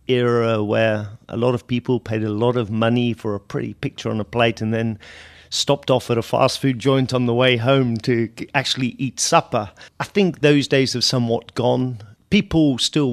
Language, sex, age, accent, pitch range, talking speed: English, male, 40-59, British, 110-135 Hz, 200 wpm